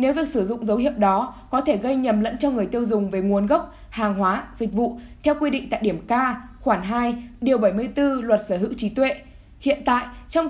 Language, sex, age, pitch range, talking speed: Vietnamese, female, 10-29, 215-265 Hz, 235 wpm